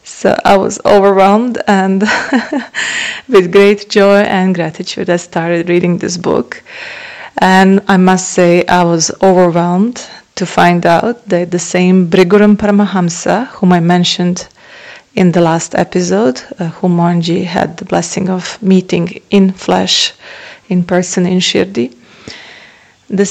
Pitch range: 175-195 Hz